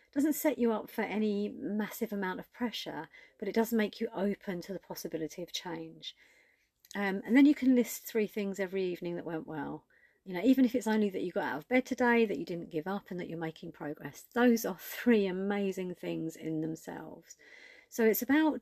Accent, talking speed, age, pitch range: British, 215 wpm, 40-59, 165-225 Hz